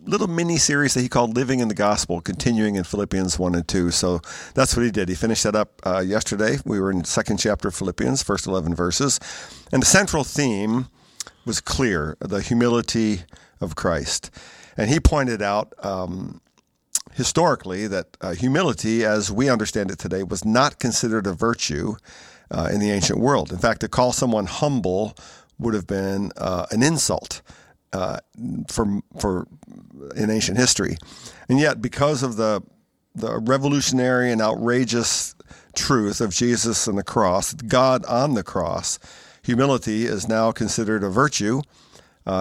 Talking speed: 165 wpm